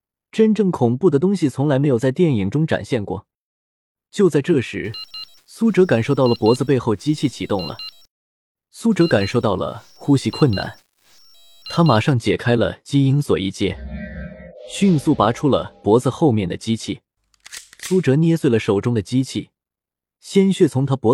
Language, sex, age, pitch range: Chinese, male, 20-39, 110-160 Hz